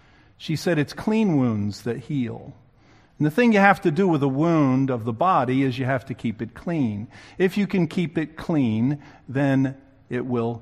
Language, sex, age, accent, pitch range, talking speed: English, male, 50-69, American, 115-140 Hz, 205 wpm